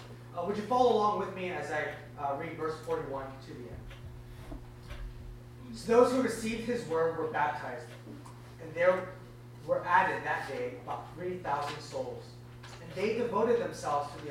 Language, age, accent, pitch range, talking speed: English, 30-49, American, 120-155 Hz, 165 wpm